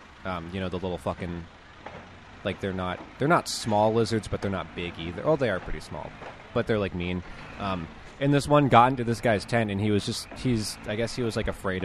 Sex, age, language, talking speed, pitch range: male, 20-39, English, 245 wpm, 95-120 Hz